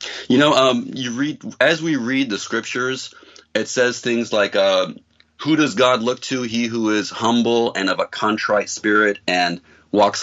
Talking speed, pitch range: 180 wpm, 95-120 Hz